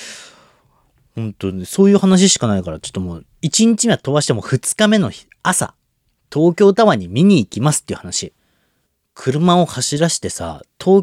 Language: Japanese